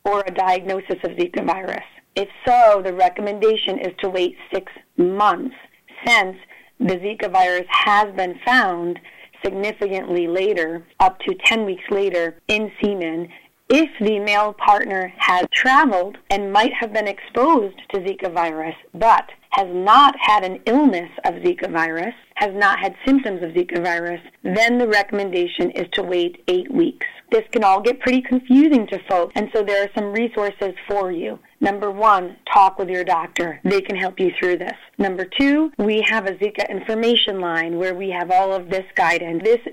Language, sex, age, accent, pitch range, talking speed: English, female, 30-49, American, 185-220 Hz, 170 wpm